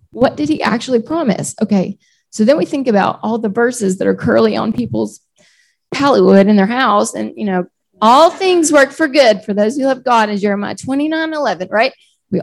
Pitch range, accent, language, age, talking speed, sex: 185-240 Hz, American, English, 30-49, 205 wpm, female